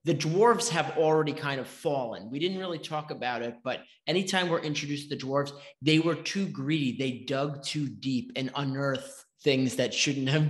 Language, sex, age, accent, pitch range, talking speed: English, male, 30-49, American, 140-175 Hz, 195 wpm